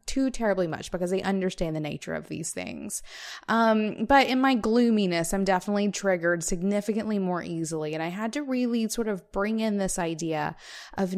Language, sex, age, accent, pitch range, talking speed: English, female, 20-39, American, 175-220 Hz, 185 wpm